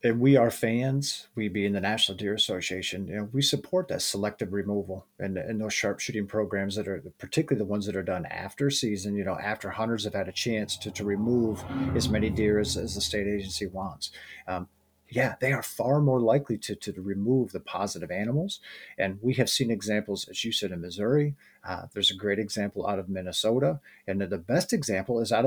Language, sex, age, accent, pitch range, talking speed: English, male, 40-59, American, 100-120 Hz, 210 wpm